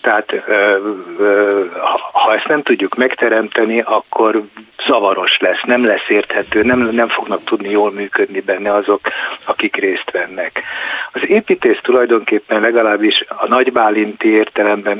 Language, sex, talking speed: Hungarian, male, 115 wpm